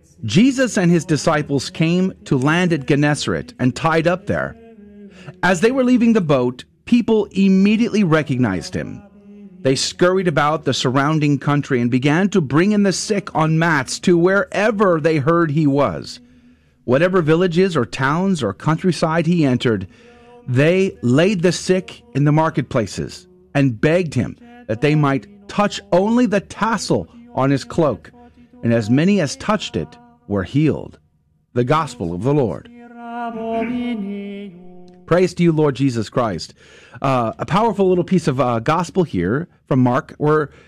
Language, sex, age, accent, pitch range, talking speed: English, male, 40-59, American, 135-190 Hz, 150 wpm